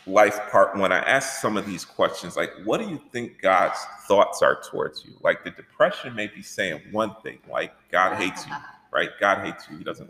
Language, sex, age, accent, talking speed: English, male, 40-59, American, 220 wpm